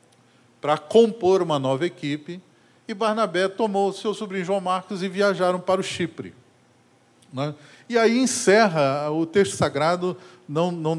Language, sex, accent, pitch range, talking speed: Portuguese, male, Brazilian, 145-200 Hz, 145 wpm